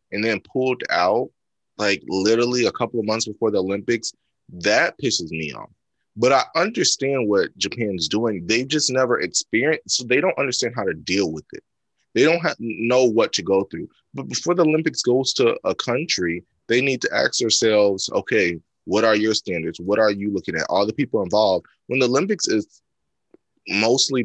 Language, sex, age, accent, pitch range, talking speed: English, male, 20-39, American, 100-120 Hz, 185 wpm